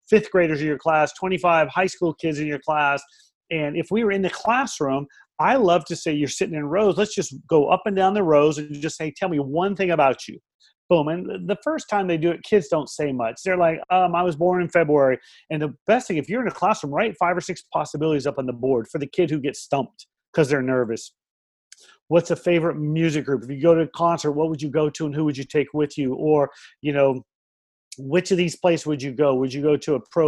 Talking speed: 260 wpm